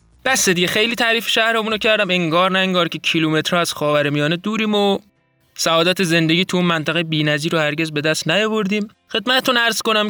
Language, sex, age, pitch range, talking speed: Persian, male, 20-39, 145-190 Hz, 180 wpm